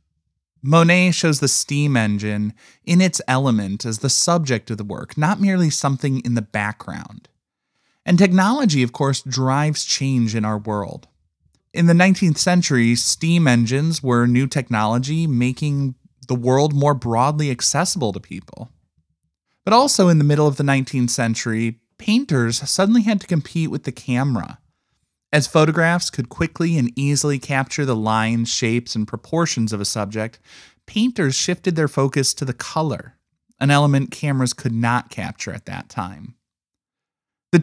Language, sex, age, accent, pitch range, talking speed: English, male, 20-39, American, 115-160 Hz, 150 wpm